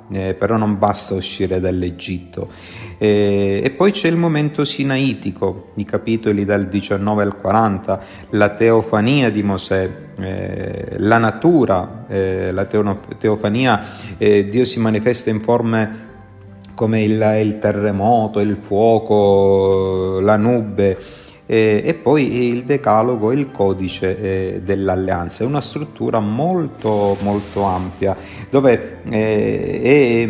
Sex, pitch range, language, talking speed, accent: male, 95-115 Hz, Italian, 115 wpm, native